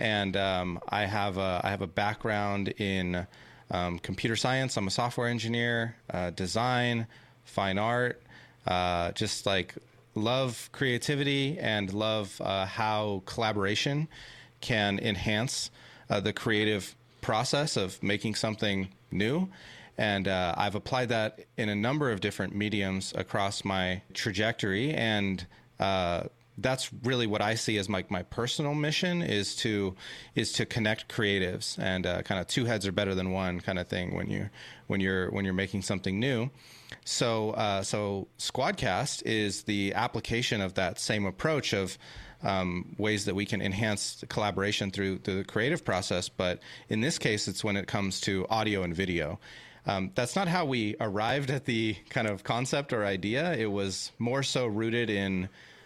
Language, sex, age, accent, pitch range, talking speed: English, male, 30-49, American, 95-120 Hz, 160 wpm